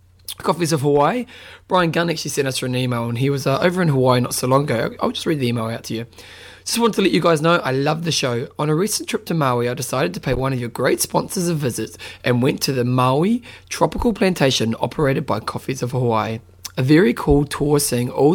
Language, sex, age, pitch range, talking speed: English, male, 20-39, 120-160 Hz, 245 wpm